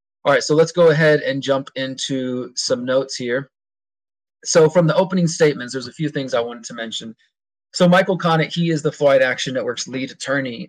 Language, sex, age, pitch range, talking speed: English, male, 20-39, 130-165 Hz, 200 wpm